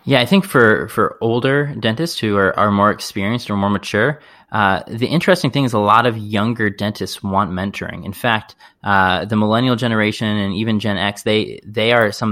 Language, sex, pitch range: English, male, 100-115 Hz